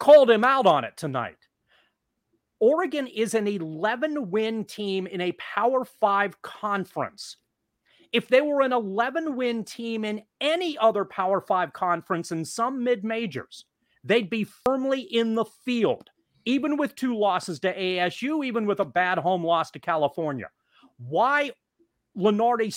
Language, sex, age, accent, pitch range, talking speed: English, male, 40-59, American, 165-245 Hz, 140 wpm